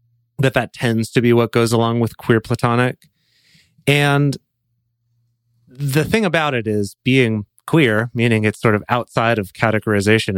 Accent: American